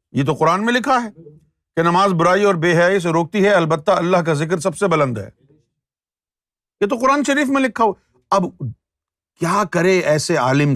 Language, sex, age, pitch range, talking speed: Urdu, male, 50-69, 130-195 Hz, 195 wpm